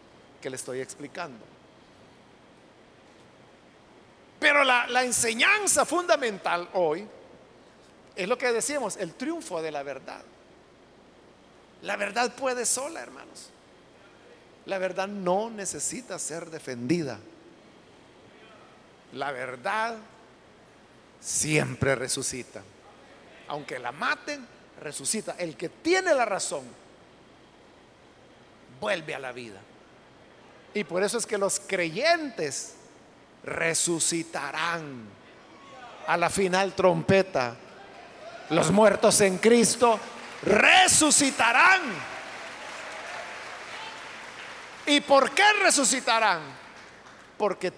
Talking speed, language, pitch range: 85 wpm, Spanish, 165-260 Hz